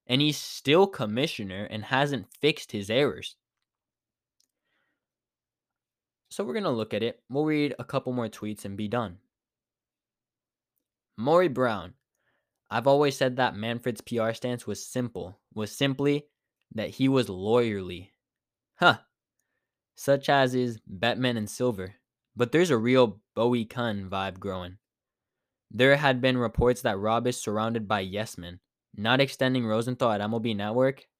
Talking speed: 140 wpm